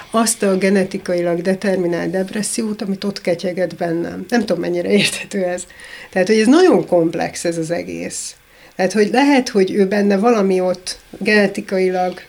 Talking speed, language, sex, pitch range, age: 150 wpm, Hungarian, female, 185-225 Hz, 30-49